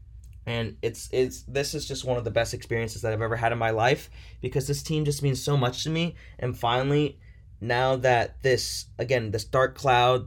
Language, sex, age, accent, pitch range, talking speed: English, male, 20-39, American, 110-155 Hz, 210 wpm